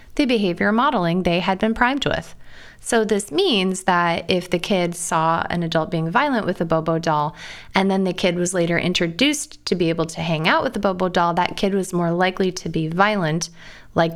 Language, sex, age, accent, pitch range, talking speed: English, female, 20-39, American, 170-210 Hz, 210 wpm